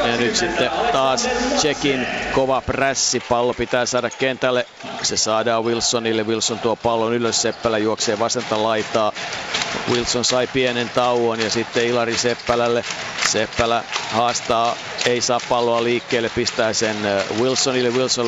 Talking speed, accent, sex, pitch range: 130 wpm, native, male, 110-125 Hz